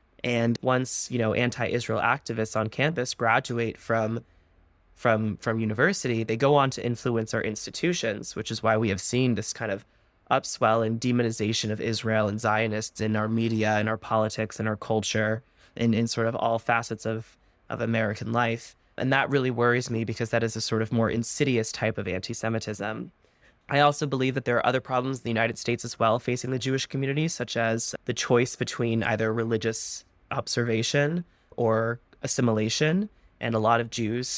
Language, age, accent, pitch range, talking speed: English, 20-39, American, 110-125 Hz, 180 wpm